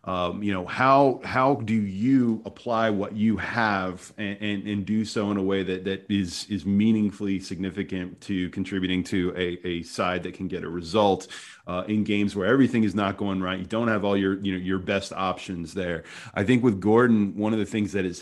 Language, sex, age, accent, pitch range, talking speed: English, male, 30-49, American, 95-110 Hz, 215 wpm